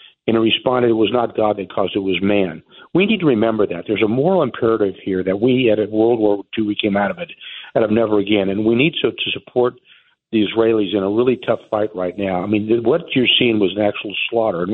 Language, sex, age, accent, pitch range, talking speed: English, male, 50-69, American, 105-125 Hz, 255 wpm